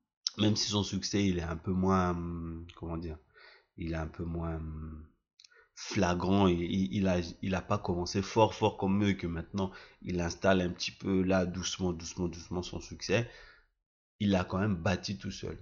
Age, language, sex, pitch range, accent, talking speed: 30-49, French, male, 90-100 Hz, French, 190 wpm